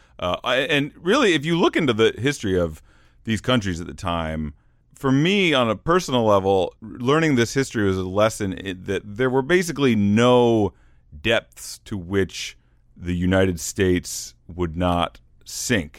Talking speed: 155 wpm